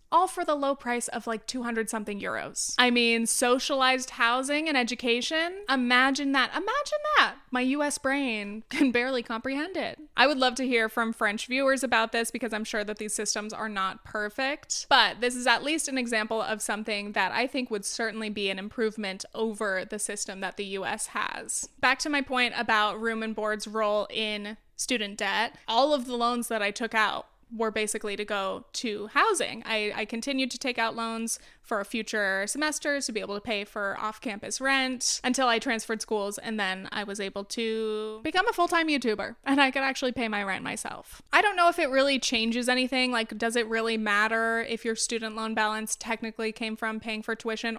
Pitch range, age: 215-265 Hz, 20-39